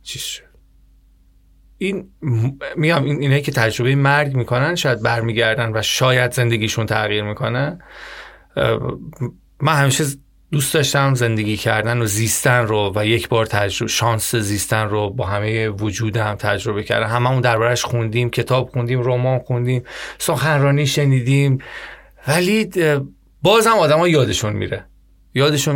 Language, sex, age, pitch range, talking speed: Persian, male, 30-49, 110-145 Hz, 120 wpm